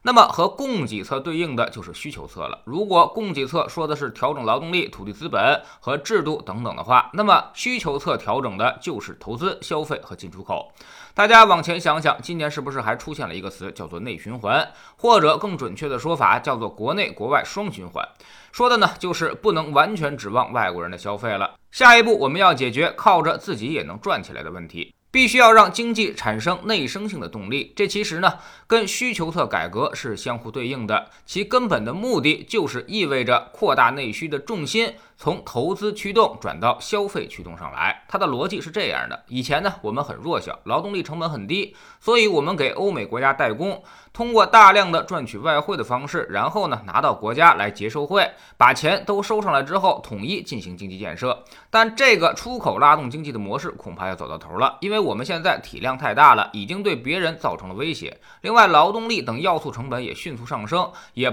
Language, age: Chinese, 20-39